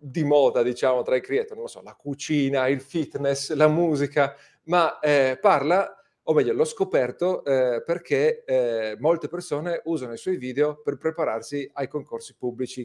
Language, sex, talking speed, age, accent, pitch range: Italian, male, 170 wpm, 40-59, native, 125-185 Hz